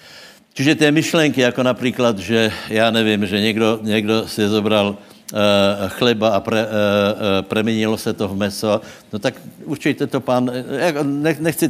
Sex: male